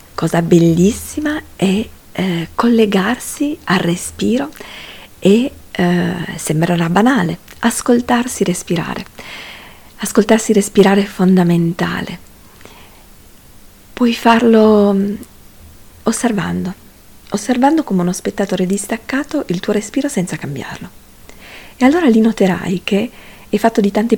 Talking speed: 95 wpm